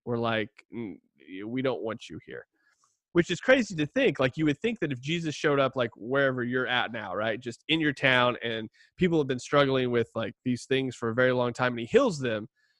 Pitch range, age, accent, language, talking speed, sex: 120-145 Hz, 20-39, American, English, 235 wpm, male